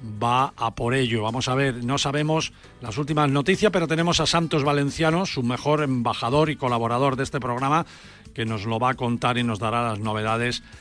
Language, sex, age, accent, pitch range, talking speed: Spanish, male, 40-59, Spanish, 120-155 Hz, 200 wpm